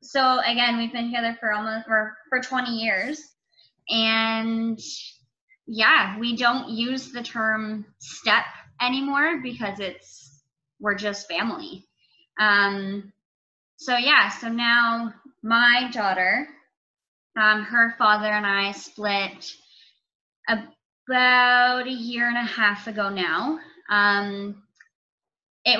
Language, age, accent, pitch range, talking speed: English, 20-39, American, 200-235 Hz, 110 wpm